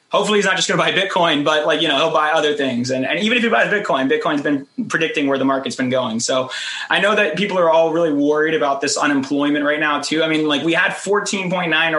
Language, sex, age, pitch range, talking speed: English, male, 20-39, 145-165 Hz, 265 wpm